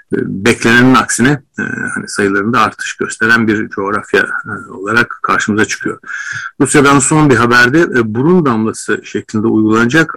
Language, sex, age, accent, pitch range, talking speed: Turkish, male, 60-79, native, 110-140 Hz, 105 wpm